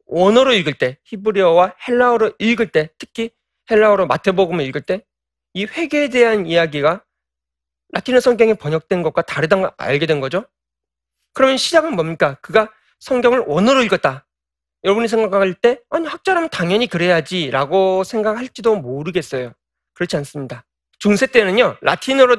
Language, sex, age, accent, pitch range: Korean, male, 40-59, native, 160-235 Hz